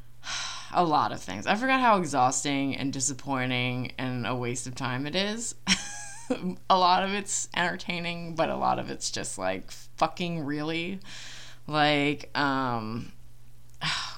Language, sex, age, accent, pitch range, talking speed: English, female, 20-39, American, 125-165 Hz, 145 wpm